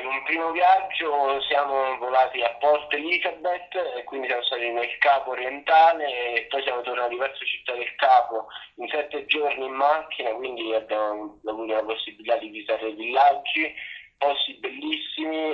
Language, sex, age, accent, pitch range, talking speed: Italian, male, 20-39, native, 115-150 Hz, 150 wpm